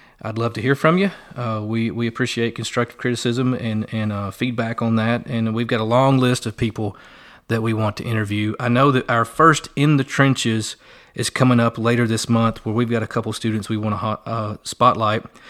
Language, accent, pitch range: English, American, 110-125 Hz